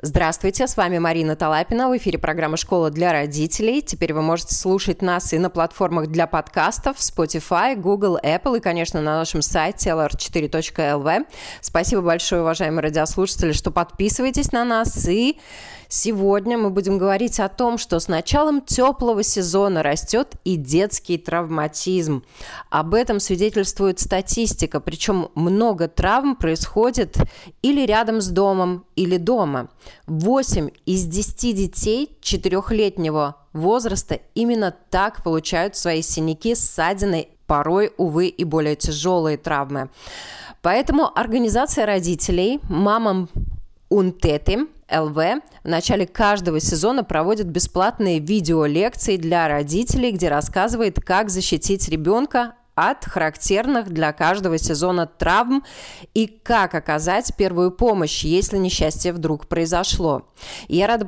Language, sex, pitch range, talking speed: Russian, female, 160-215 Hz, 120 wpm